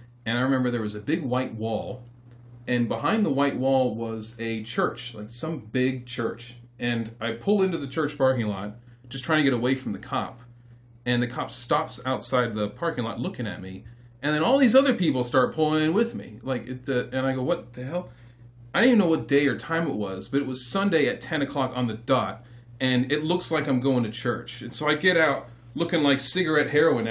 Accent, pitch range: American, 120-155 Hz